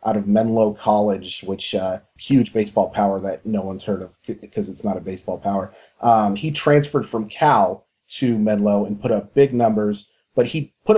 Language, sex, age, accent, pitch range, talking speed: English, male, 30-49, American, 105-115 Hz, 190 wpm